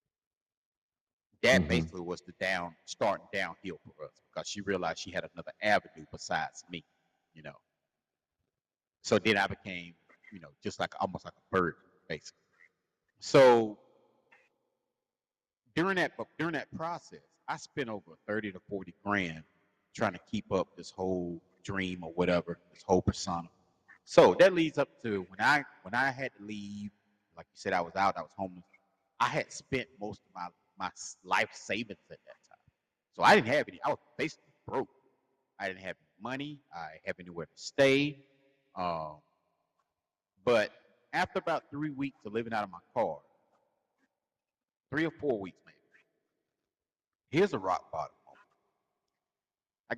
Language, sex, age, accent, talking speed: English, male, 30-49, American, 160 wpm